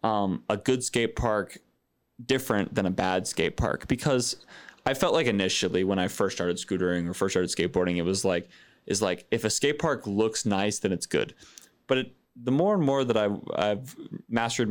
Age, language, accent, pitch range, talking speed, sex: 20-39, English, American, 100-120 Hz, 190 wpm, male